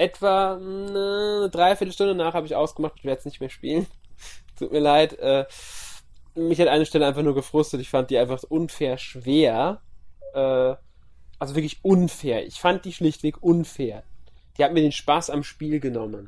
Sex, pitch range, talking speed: male, 125-165 Hz, 175 wpm